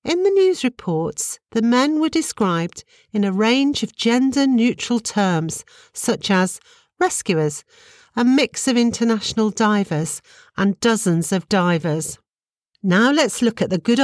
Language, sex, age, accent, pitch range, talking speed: English, female, 50-69, British, 185-270 Hz, 135 wpm